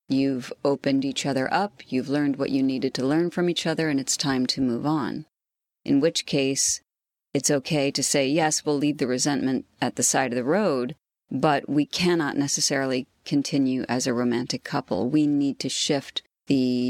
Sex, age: female, 40-59